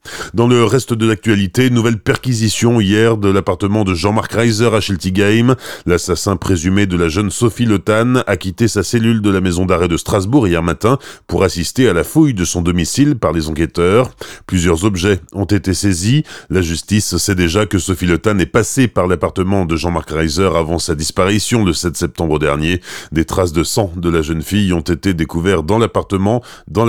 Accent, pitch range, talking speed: French, 85-110 Hz, 190 wpm